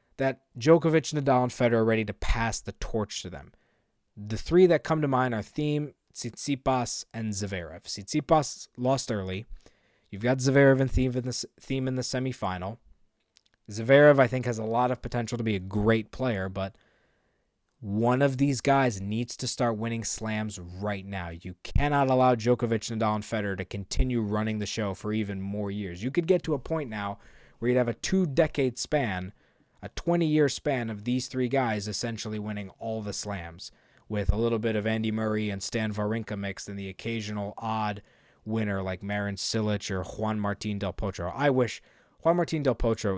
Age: 20-39